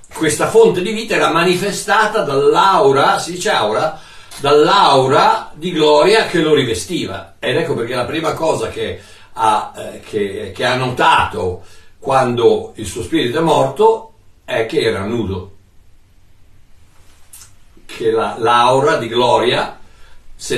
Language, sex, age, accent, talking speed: Italian, male, 60-79, native, 135 wpm